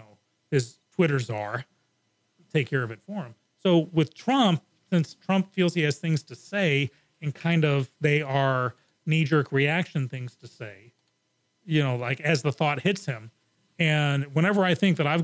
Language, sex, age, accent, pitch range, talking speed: English, male, 40-59, American, 135-170 Hz, 175 wpm